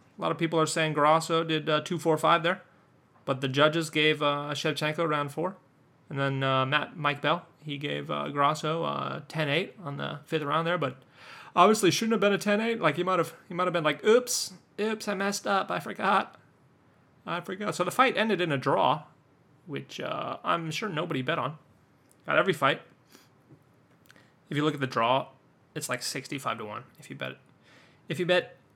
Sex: male